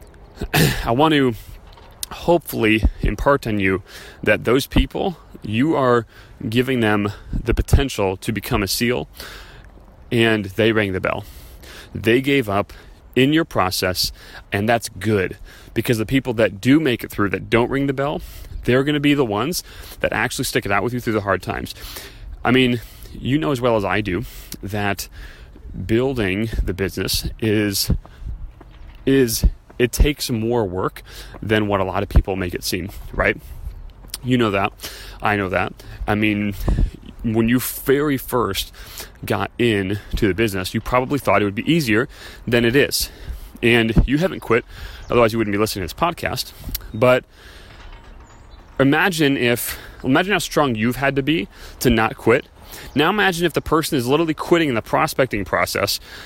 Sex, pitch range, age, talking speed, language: male, 95-125 Hz, 30-49, 165 wpm, English